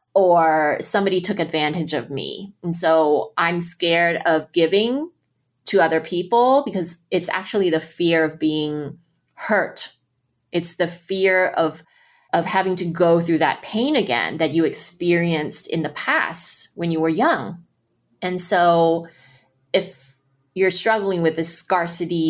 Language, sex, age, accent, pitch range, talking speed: English, female, 20-39, American, 160-200 Hz, 145 wpm